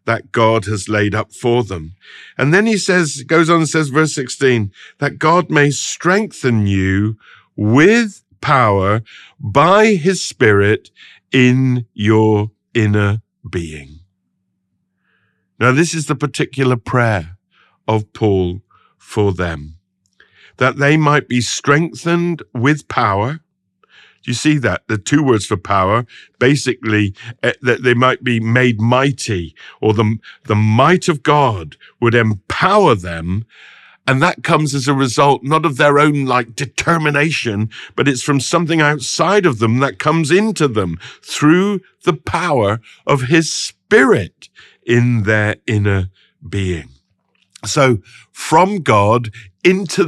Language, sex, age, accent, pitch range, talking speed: English, male, 50-69, British, 105-150 Hz, 130 wpm